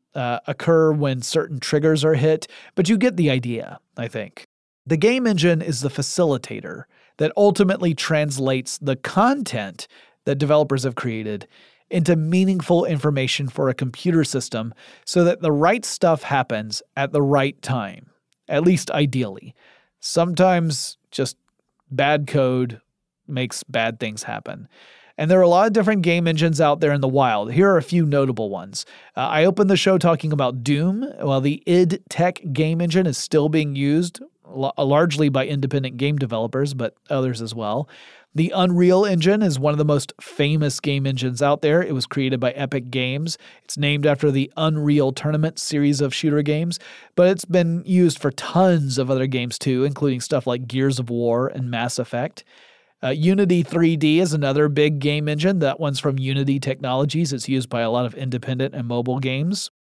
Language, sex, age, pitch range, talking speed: English, male, 30-49, 130-170 Hz, 175 wpm